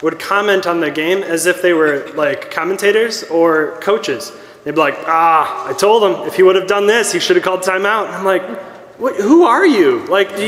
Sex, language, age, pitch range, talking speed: male, English, 20-39, 180-250 Hz, 230 wpm